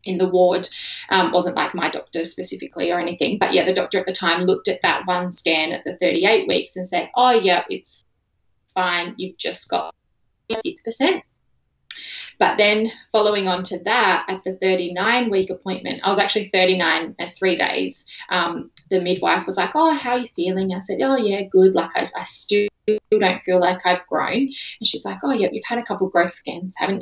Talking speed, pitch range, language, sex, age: 210 wpm, 180-210 Hz, English, female, 20-39